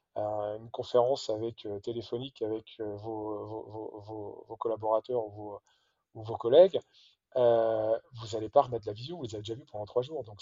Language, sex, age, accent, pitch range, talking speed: French, male, 20-39, French, 110-125 Hz, 180 wpm